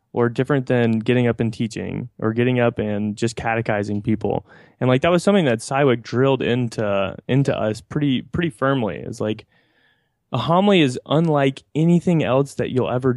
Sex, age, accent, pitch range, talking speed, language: male, 20-39, American, 115-150 Hz, 180 wpm, English